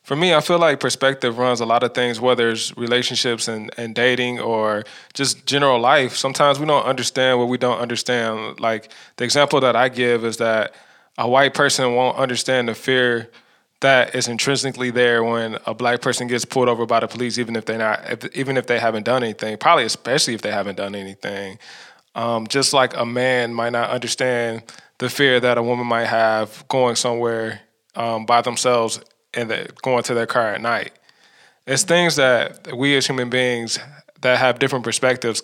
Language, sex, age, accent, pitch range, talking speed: English, male, 20-39, American, 115-130 Hz, 195 wpm